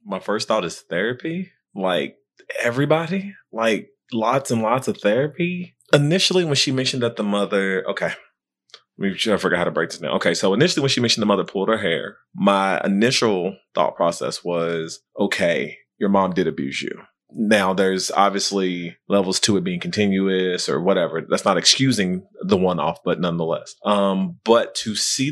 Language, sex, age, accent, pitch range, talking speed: English, male, 30-49, American, 95-125 Hz, 175 wpm